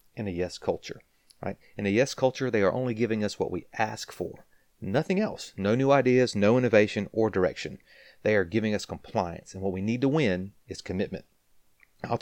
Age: 30-49